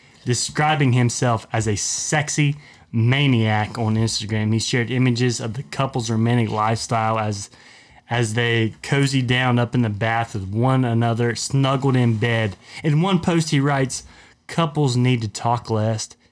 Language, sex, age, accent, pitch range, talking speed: English, male, 30-49, American, 110-130 Hz, 150 wpm